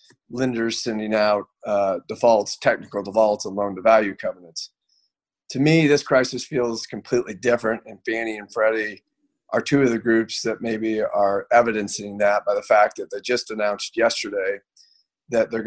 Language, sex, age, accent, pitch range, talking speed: English, male, 40-59, American, 105-125 Hz, 155 wpm